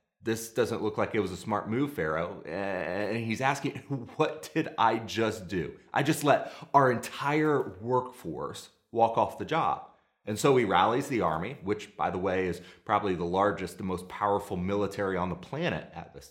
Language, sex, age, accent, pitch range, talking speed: English, male, 30-49, American, 100-135 Hz, 190 wpm